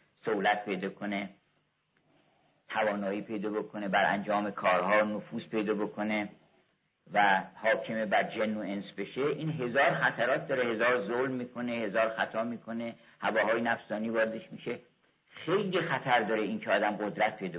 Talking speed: 140 wpm